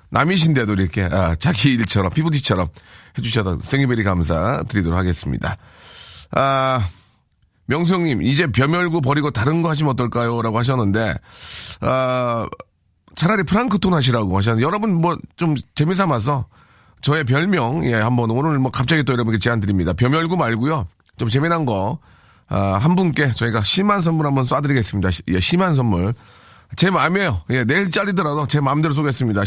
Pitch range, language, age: 105-160 Hz, Korean, 40-59